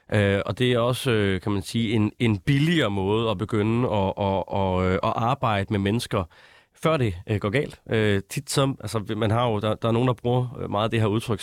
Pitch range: 105-130 Hz